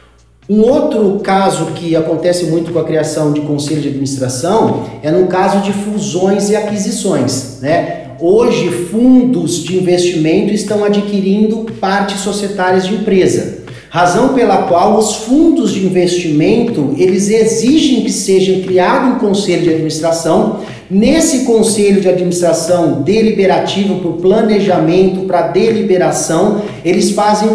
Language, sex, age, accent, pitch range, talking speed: Portuguese, male, 40-59, Brazilian, 175-215 Hz, 125 wpm